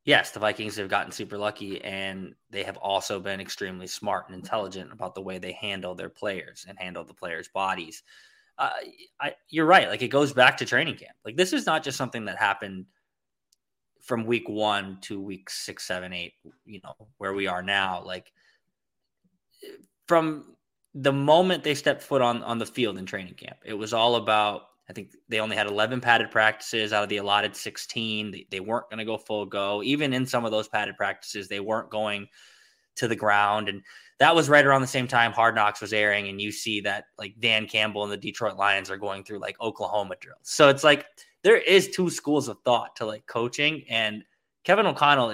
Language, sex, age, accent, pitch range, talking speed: English, male, 20-39, American, 105-140 Hz, 210 wpm